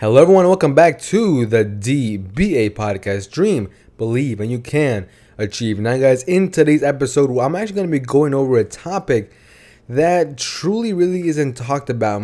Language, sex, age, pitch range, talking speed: English, male, 20-39, 120-145 Hz, 165 wpm